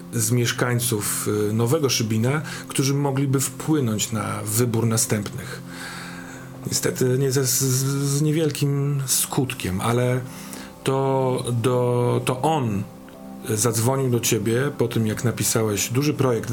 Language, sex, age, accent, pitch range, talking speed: Polish, male, 40-59, native, 115-130 Hz, 100 wpm